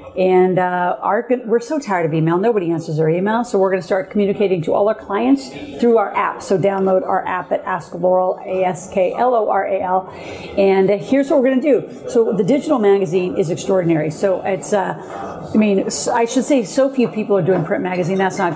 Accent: American